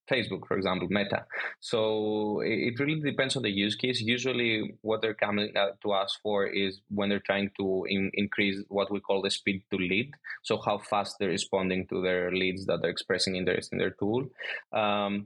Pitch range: 95-110 Hz